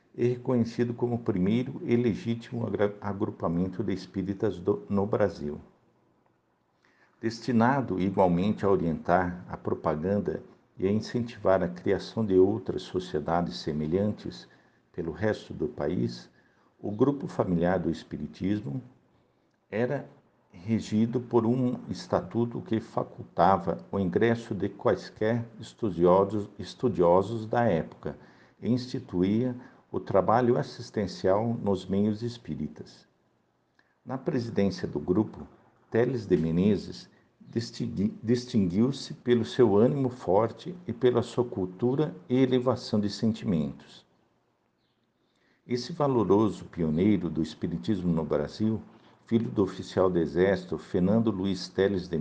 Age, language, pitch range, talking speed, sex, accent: 60-79, Portuguese, 95-120 Hz, 110 wpm, male, Brazilian